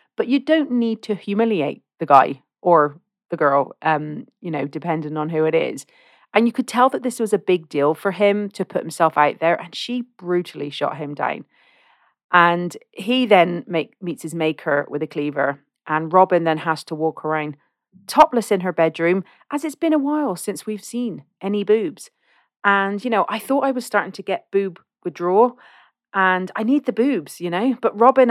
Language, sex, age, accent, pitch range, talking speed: English, female, 40-59, British, 160-220 Hz, 200 wpm